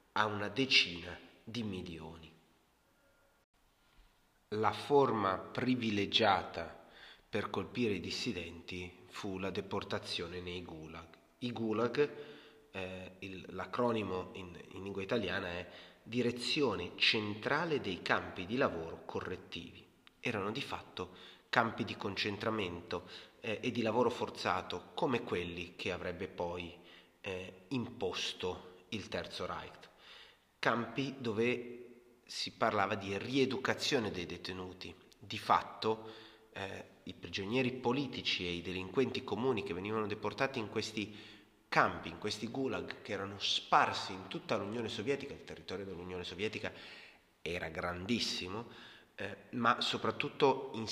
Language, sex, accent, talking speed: Italian, male, native, 115 wpm